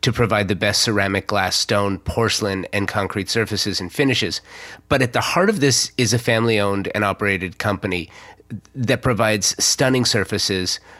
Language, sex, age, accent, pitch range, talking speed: English, male, 30-49, American, 105-125 Hz, 160 wpm